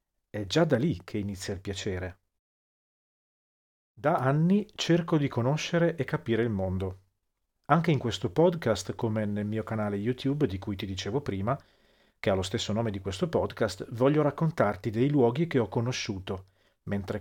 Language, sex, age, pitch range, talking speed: Italian, male, 40-59, 100-135 Hz, 165 wpm